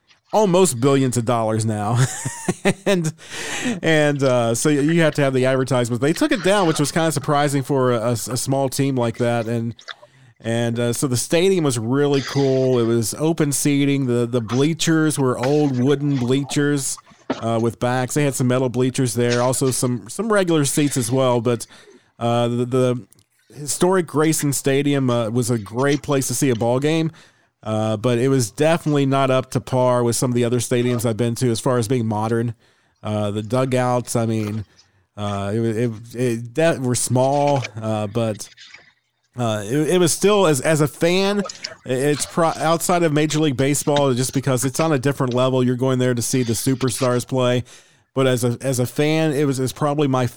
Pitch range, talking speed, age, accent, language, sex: 120-145 Hz, 195 wpm, 40-59, American, English, male